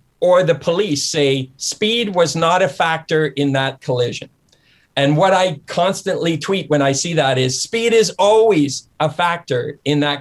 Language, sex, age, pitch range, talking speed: English, male, 50-69, 140-190 Hz, 170 wpm